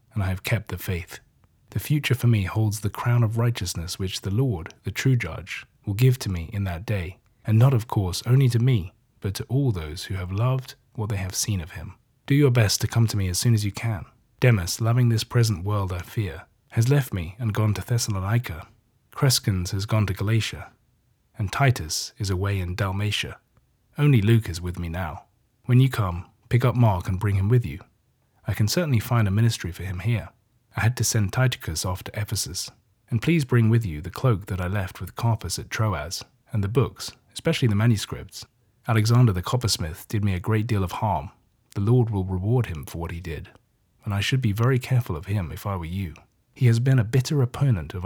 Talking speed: 220 wpm